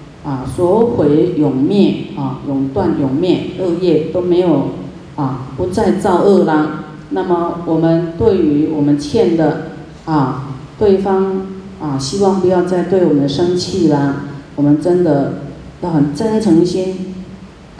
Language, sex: Chinese, female